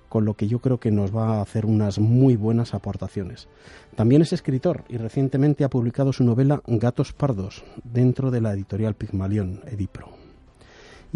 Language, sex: Spanish, male